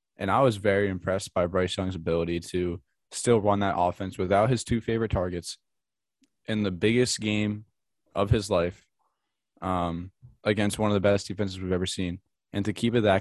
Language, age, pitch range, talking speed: English, 10-29, 90-100 Hz, 185 wpm